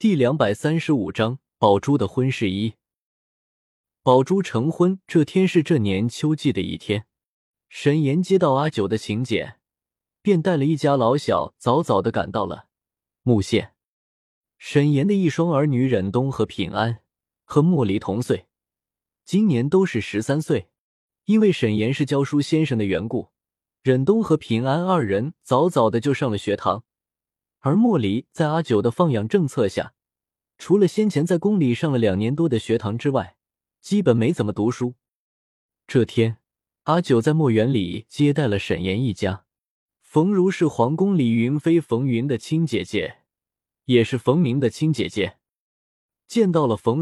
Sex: male